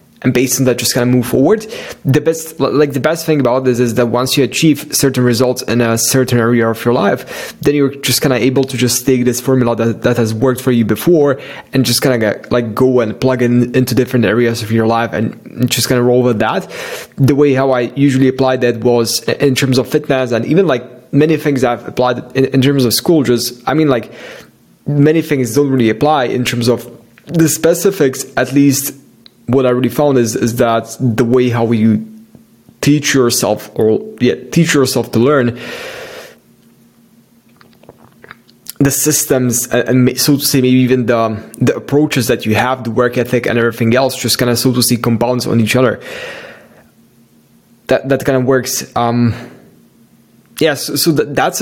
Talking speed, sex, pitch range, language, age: 200 wpm, male, 120-140 Hz, English, 20-39